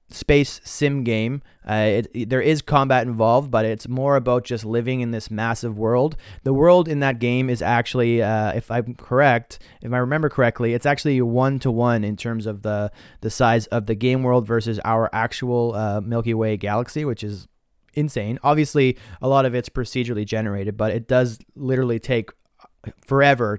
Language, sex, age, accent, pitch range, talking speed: English, male, 30-49, American, 110-135 Hz, 175 wpm